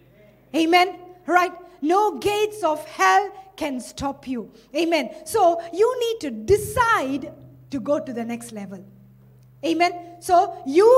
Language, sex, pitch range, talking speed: English, female, 295-385 Hz, 130 wpm